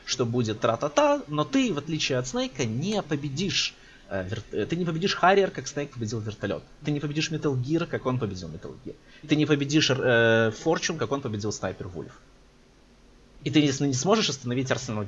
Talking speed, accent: 180 wpm, native